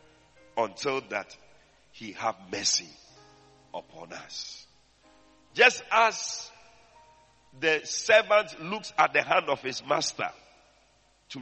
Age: 50-69